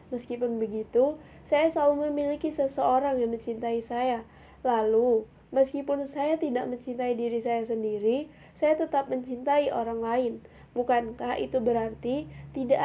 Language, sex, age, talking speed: Indonesian, female, 20-39, 120 wpm